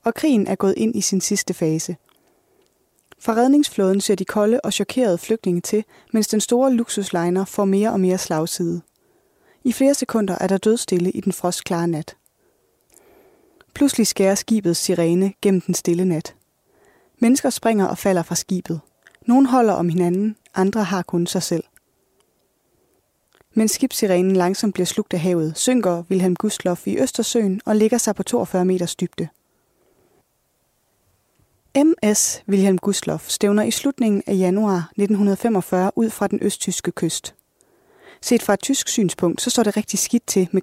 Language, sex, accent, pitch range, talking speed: Danish, female, native, 185-245 Hz, 155 wpm